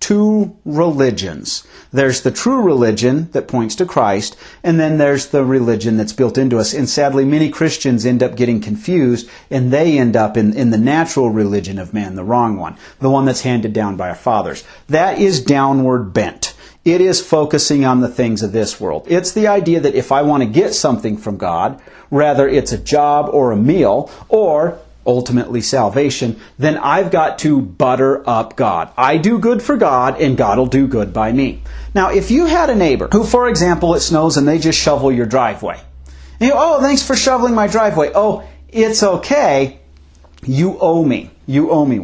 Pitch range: 125-195 Hz